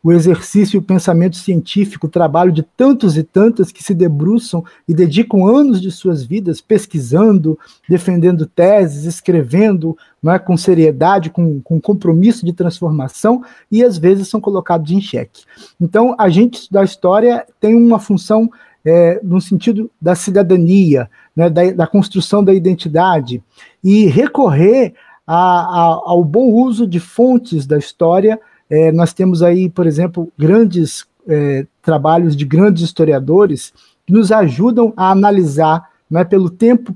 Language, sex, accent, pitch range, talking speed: Portuguese, male, Brazilian, 165-205 Hz, 140 wpm